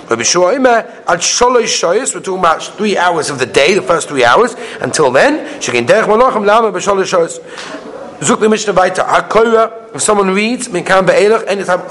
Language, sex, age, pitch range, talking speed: English, male, 30-49, 165-225 Hz, 125 wpm